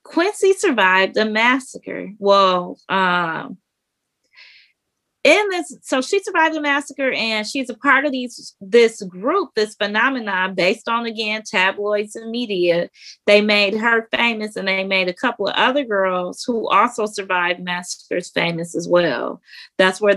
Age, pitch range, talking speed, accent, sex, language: 20-39, 185-260 Hz, 150 wpm, American, female, English